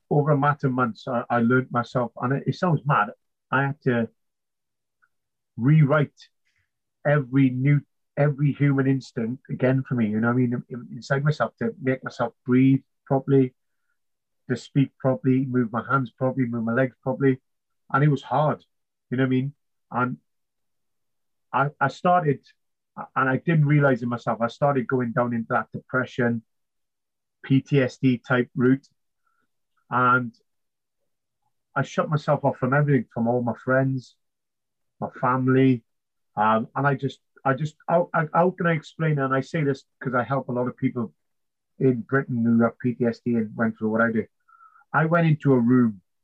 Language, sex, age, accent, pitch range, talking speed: English, male, 30-49, British, 120-140 Hz, 165 wpm